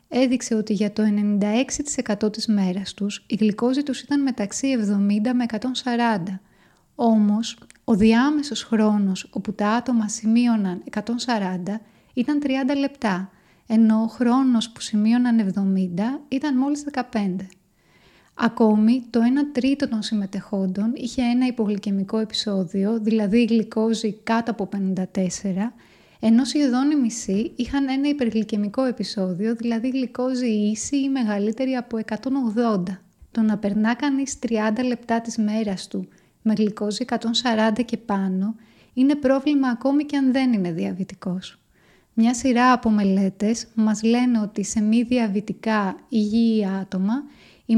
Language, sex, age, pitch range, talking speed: Greek, female, 20-39, 205-245 Hz, 130 wpm